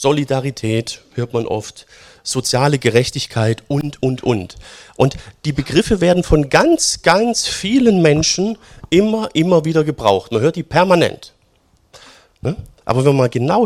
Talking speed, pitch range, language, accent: 135 wpm, 115-150 Hz, German, German